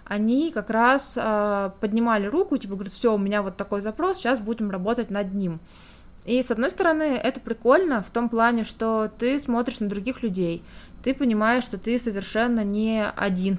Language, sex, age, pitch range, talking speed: Russian, female, 20-39, 185-230 Hz, 180 wpm